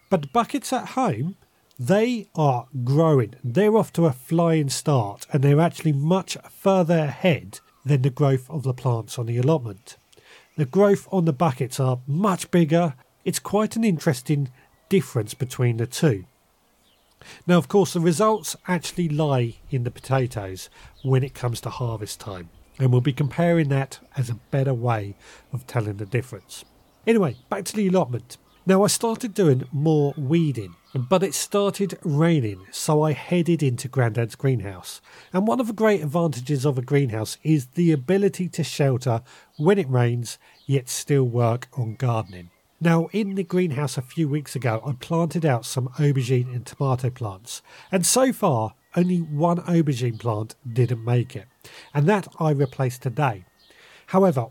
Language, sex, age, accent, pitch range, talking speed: English, male, 40-59, British, 125-175 Hz, 165 wpm